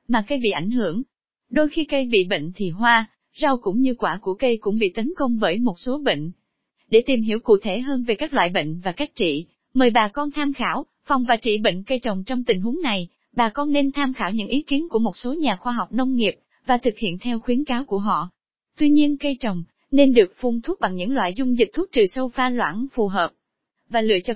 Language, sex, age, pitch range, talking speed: Vietnamese, female, 20-39, 210-275 Hz, 250 wpm